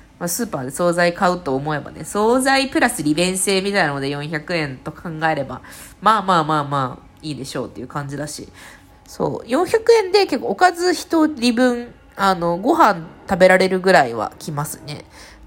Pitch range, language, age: 150-235 Hz, Japanese, 20-39